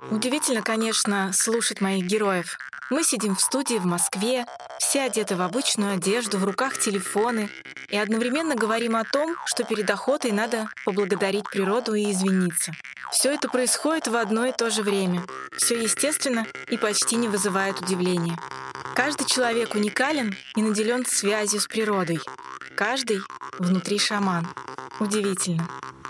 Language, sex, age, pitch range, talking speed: Russian, female, 20-39, 195-250 Hz, 140 wpm